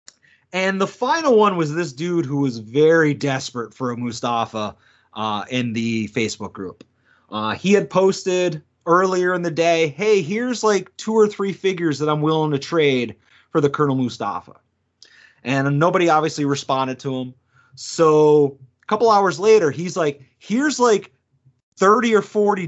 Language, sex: English, male